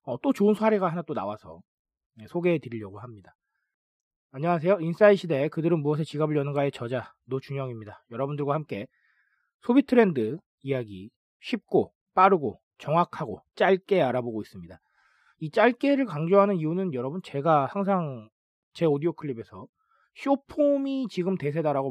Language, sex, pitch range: Korean, male, 140-225 Hz